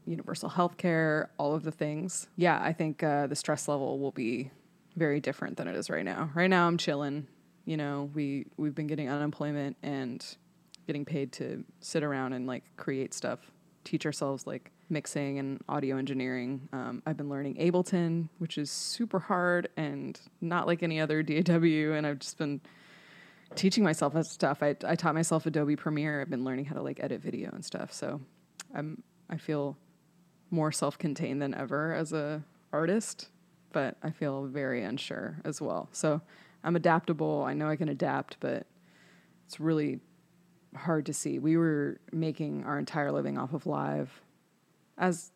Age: 20-39